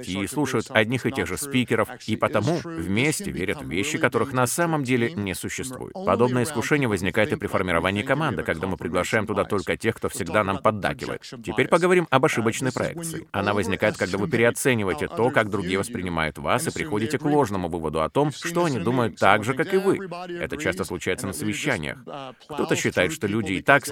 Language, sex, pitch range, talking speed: Russian, male, 100-140 Hz, 195 wpm